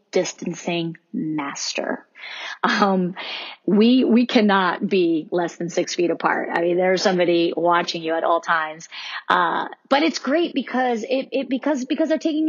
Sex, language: female, English